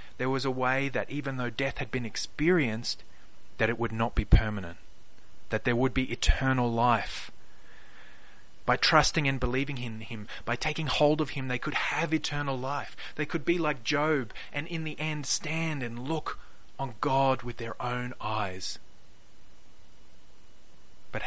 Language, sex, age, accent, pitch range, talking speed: English, male, 30-49, Australian, 110-135 Hz, 165 wpm